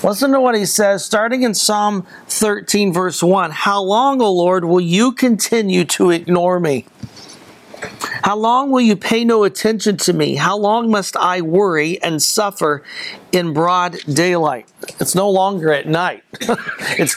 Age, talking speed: 50-69, 160 wpm